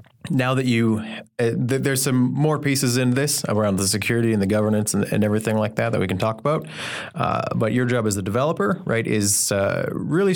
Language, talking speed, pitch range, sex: English, 220 wpm, 105-130 Hz, male